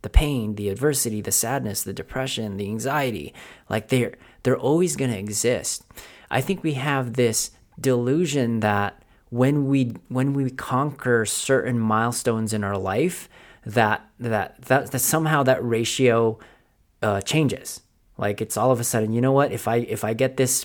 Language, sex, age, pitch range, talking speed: English, male, 30-49, 110-130 Hz, 170 wpm